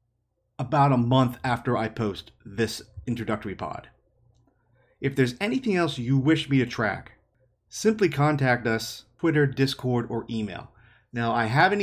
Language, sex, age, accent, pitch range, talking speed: English, male, 30-49, American, 115-135 Hz, 145 wpm